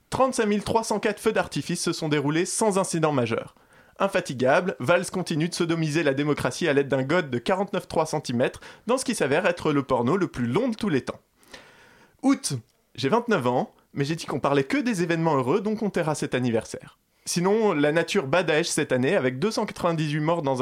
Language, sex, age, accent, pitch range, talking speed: French, male, 20-39, French, 135-185 Hz, 190 wpm